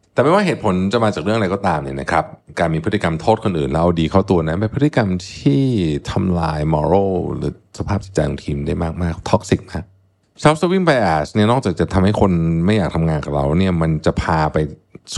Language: Thai